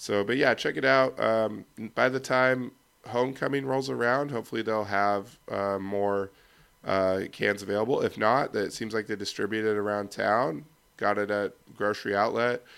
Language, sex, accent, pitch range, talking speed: English, male, American, 95-110 Hz, 170 wpm